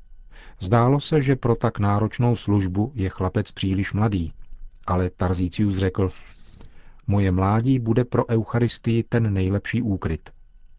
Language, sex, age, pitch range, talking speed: Czech, male, 40-59, 95-115 Hz, 120 wpm